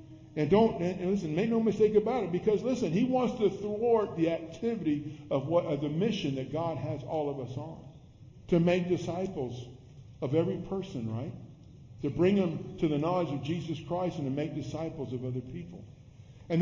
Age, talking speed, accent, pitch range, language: 50-69, 190 wpm, American, 130-195 Hz, English